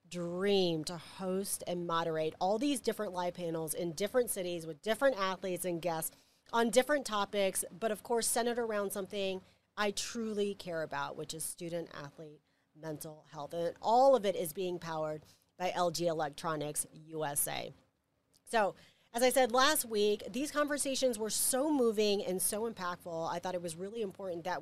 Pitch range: 170-230 Hz